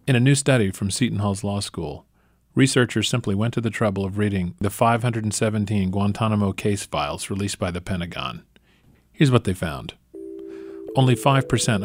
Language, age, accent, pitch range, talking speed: English, 40-59, American, 100-125 Hz, 160 wpm